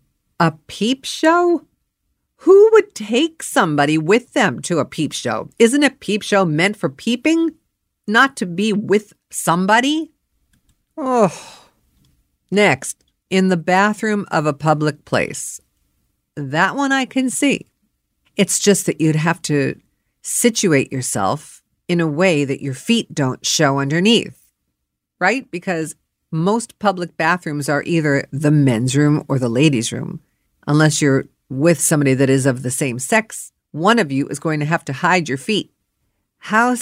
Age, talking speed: 50-69, 150 wpm